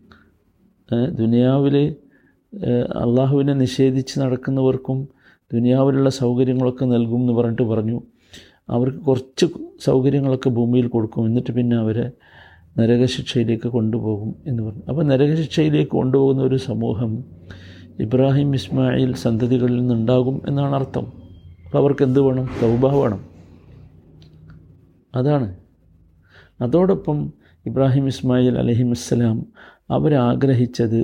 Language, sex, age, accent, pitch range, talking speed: Malayalam, male, 50-69, native, 115-135 Hz, 90 wpm